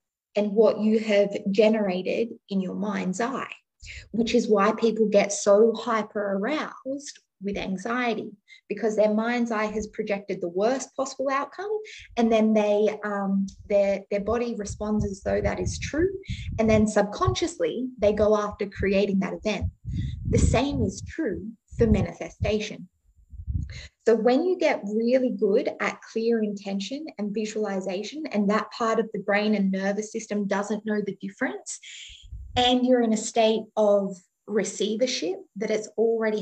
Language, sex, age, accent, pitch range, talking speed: English, female, 20-39, Australian, 205-240 Hz, 150 wpm